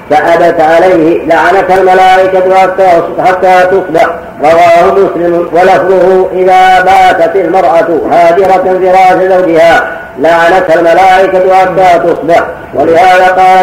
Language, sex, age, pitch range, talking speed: Arabic, female, 40-59, 170-185 Hz, 95 wpm